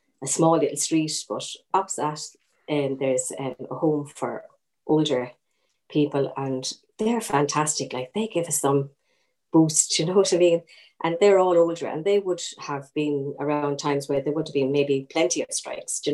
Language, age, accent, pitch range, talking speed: English, 30-49, Irish, 145-160 Hz, 190 wpm